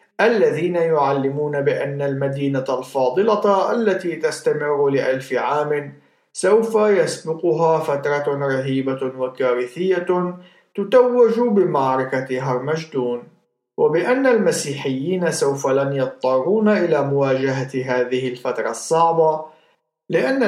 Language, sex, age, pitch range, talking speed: Arabic, male, 50-69, 135-180 Hz, 80 wpm